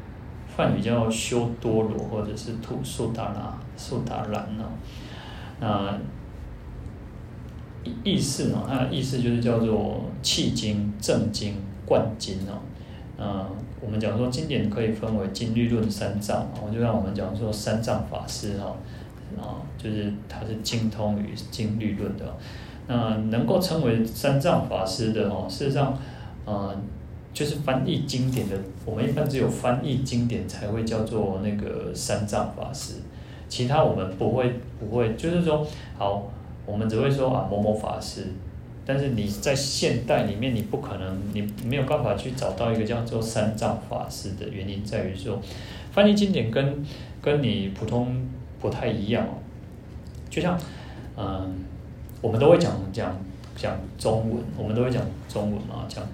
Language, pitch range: Chinese, 105-120 Hz